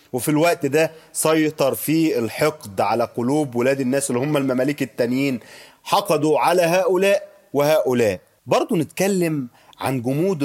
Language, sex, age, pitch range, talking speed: Arabic, male, 30-49, 120-160 Hz, 125 wpm